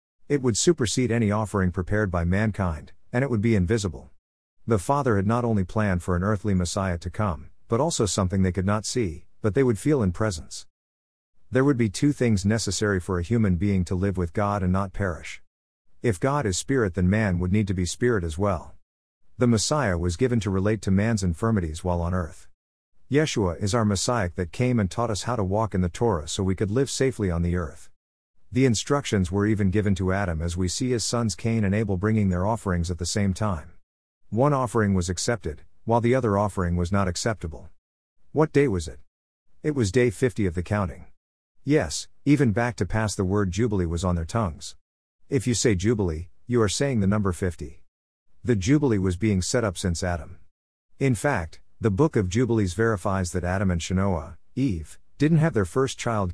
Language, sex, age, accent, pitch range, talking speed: English, male, 50-69, American, 90-115 Hz, 205 wpm